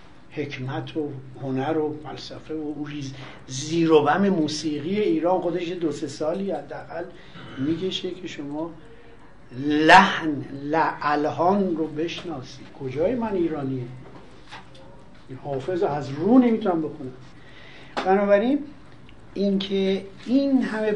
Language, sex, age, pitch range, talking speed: Persian, male, 60-79, 150-225 Hz, 95 wpm